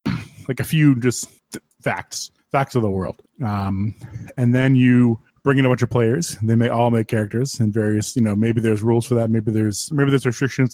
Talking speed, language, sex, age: 220 wpm, English, male, 20-39